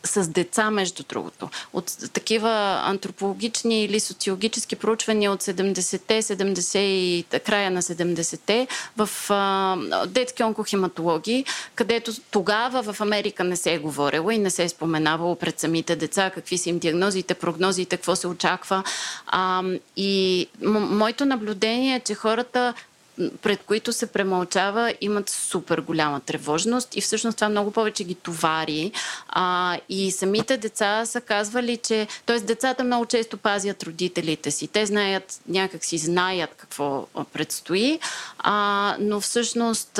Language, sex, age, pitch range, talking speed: Bulgarian, female, 30-49, 180-225 Hz, 135 wpm